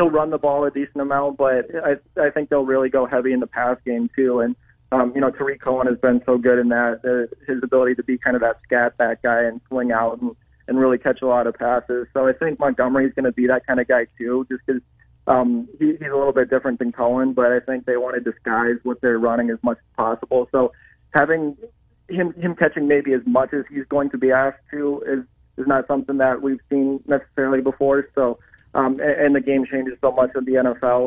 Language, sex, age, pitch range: English, male, 30-49, 125-140 Hz